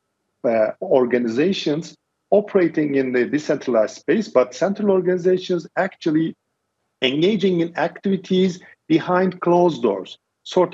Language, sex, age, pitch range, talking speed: English, male, 50-69, 125-175 Hz, 100 wpm